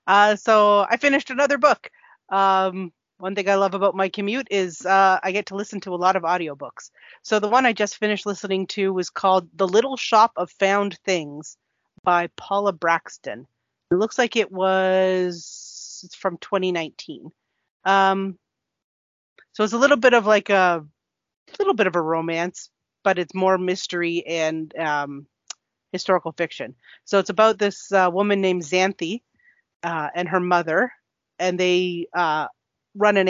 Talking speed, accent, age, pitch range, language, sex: 170 wpm, American, 30-49, 170-200 Hz, English, female